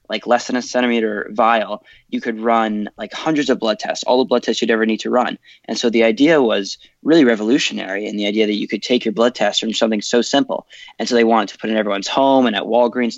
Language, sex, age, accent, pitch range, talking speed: English, male, 20-39, American, 110-120 Hz, 260 wpm